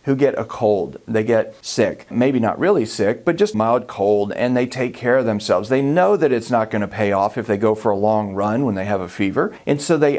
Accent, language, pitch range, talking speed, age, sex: American, English, 110-150 Hz, 260 wpm, 40-59, male